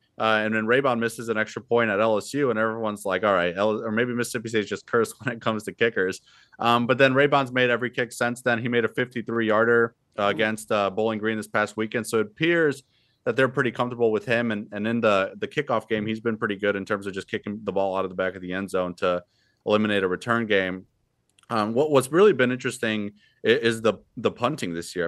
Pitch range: 100-120 Hz